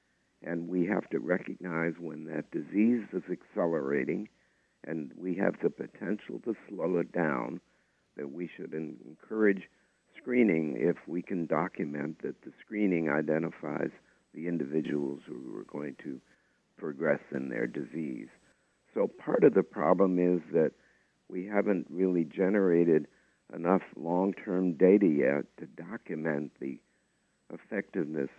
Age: 60-79